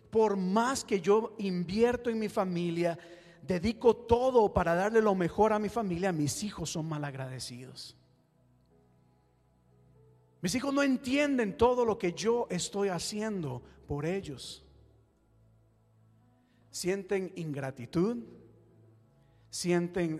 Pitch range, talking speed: 135-215 Hz, 105 wpm